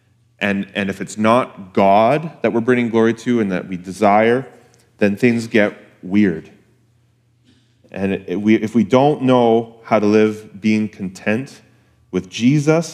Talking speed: 140 wpm